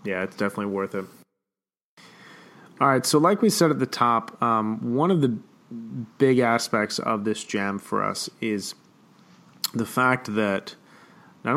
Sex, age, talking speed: male, 30-49, 155 wpm